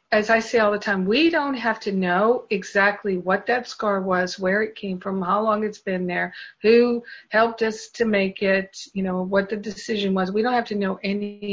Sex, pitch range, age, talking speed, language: female, 195-230 Hz, 50-69, 225 wpm, English